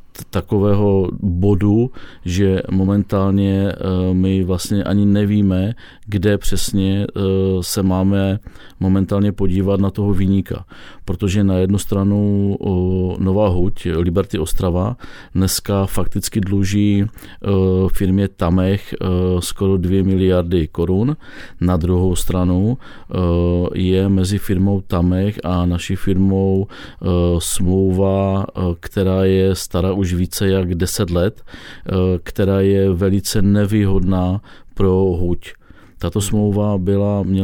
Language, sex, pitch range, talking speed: Czech, male, 90-100 Hz, 115 wpm